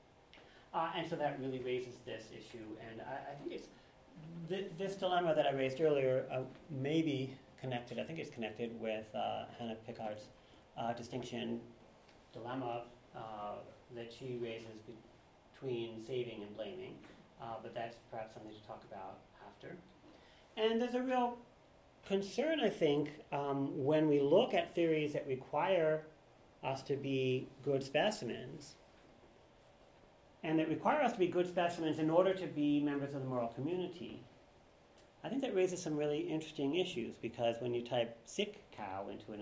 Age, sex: 40-59, male